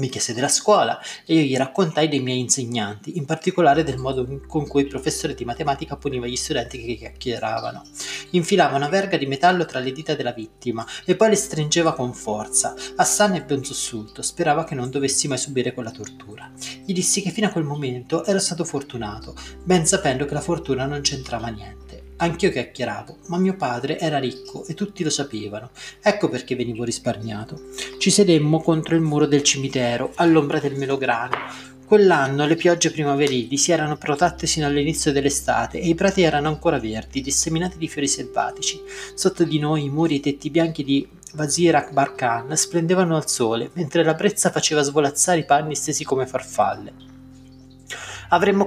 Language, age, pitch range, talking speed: Italian, 30-49, 130-170 Hz, 175 wpm